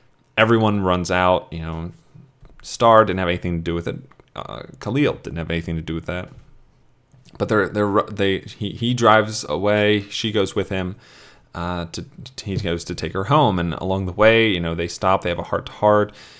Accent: American